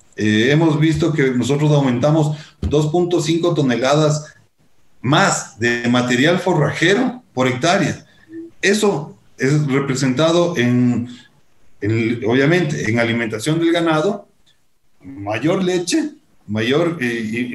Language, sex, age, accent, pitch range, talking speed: Spanish, male, 40-59, Mexican, 125-165 Hz, 95 wpm